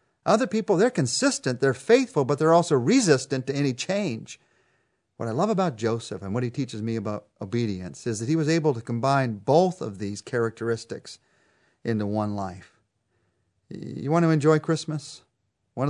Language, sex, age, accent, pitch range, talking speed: English, male, 40-59, American, 110-140 Hz, 170 wpm